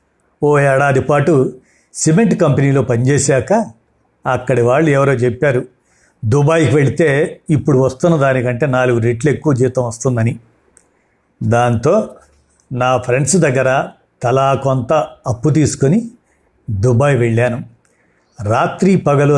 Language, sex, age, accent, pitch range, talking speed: Telugu, male, 60-79, native, 120-145 Hz, 100 wpm